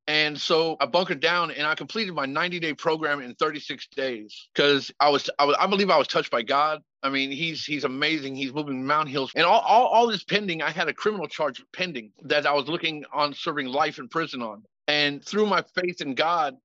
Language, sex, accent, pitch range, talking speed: English, male, American, 140-165 Hz, 225 wpm